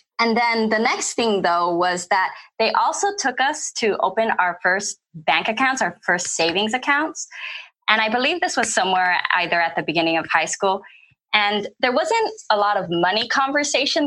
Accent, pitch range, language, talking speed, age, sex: American, 175-240 Hz, English, 185 wpm, 20-39, female